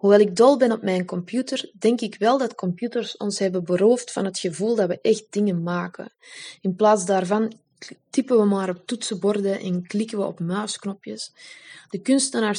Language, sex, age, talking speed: Dutch, female, 20-39, 180 wpm